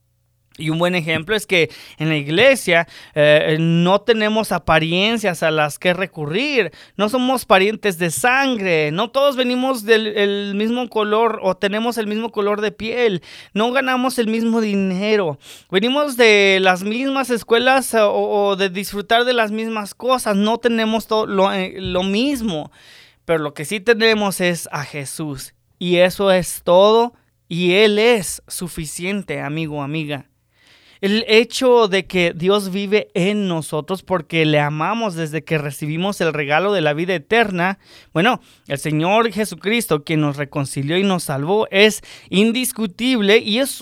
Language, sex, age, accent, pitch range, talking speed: English, male, 30-49, Mexican, 165-225 Hz, 150 wpm